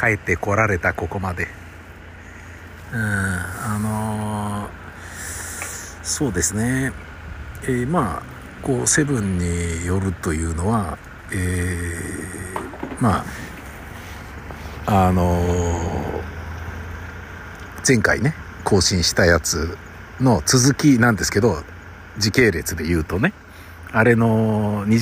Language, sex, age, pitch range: Japanese, male, 60-79, 85-110 Hz